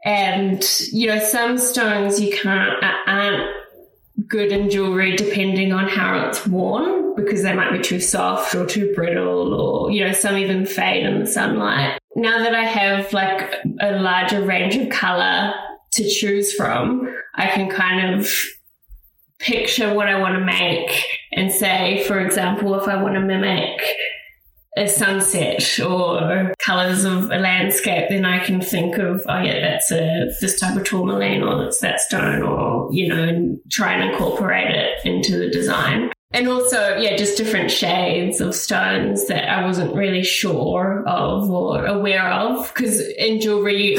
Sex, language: female, English